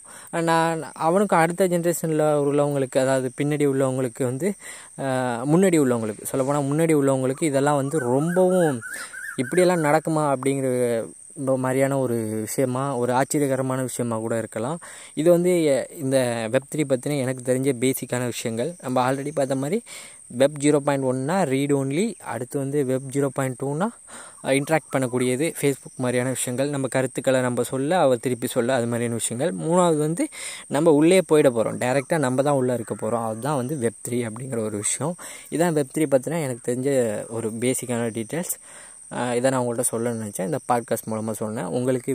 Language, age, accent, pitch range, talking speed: Tamil, 20-39, native, 120-150 Hz, 150 wpm